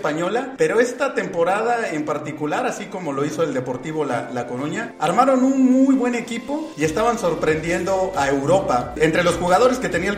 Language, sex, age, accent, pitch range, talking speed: Spanish, male, 40-59, Mexican, 150-230 Hz, 185 wpm